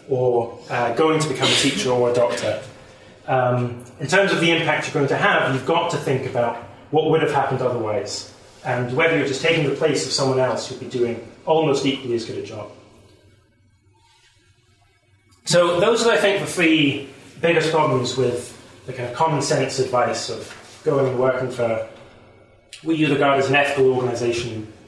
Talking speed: 185 wpm